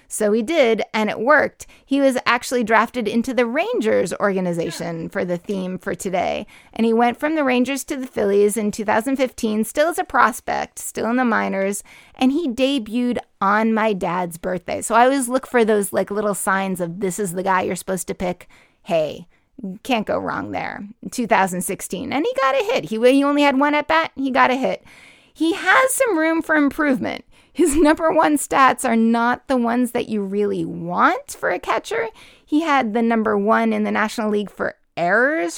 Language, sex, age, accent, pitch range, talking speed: English, female, 30-49, American, 205-275 Hz, 195 wpm